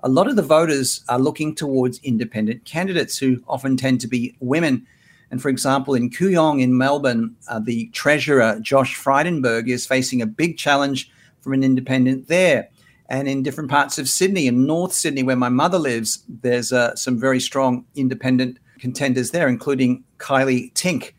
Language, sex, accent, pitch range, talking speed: English, male, Australian, 125-150 Hz, 175 wpm